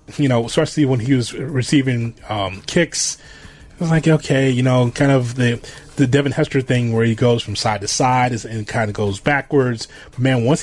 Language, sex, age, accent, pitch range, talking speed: English, male, 30-49, American, 115-145 Hz, 210 wpm